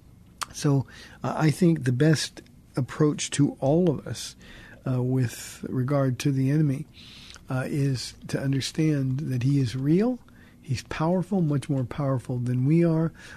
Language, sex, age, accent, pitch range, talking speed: English, male, 50-69, American, 125-160 Hz, 150 wpm